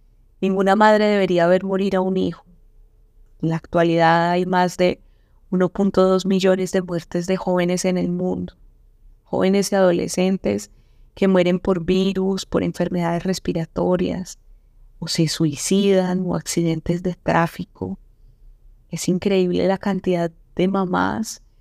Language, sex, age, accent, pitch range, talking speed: Spanish, female, 20-39, Colombian, 120-190 Hz, 130 wpm